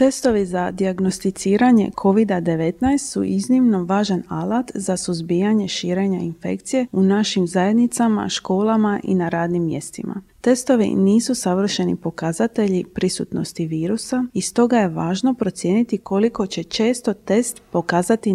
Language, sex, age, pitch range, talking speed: Croatian, female, 30-49, 180-225 Hz, 120 wpm